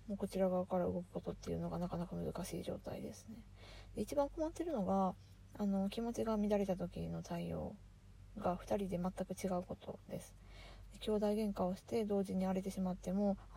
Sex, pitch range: female, 130-195 Hz